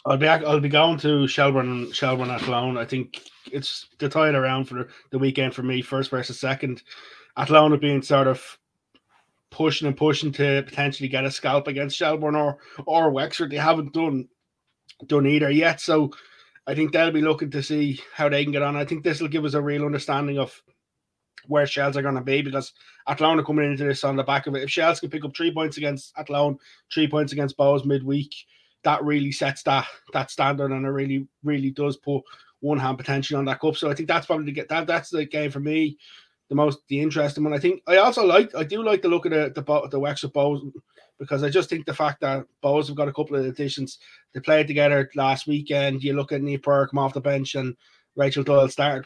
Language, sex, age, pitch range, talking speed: English, male, 20-39, 140-155 Hz, 230 wpm